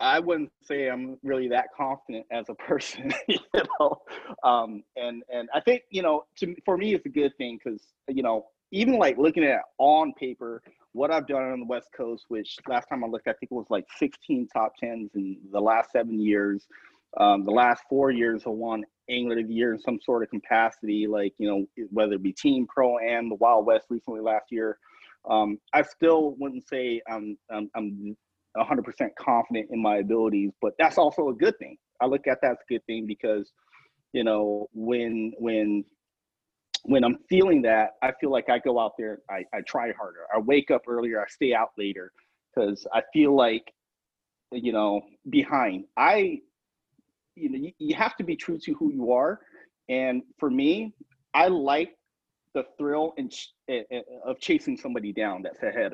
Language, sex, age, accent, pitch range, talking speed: English, male, 30-49, American, 110-155 Hz, 195 wpm